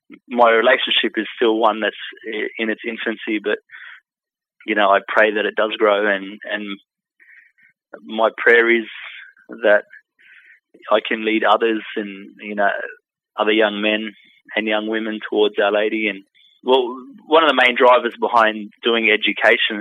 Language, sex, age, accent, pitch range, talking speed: English, male, 20-39, Australian, 105-120 Hz, 150 wpm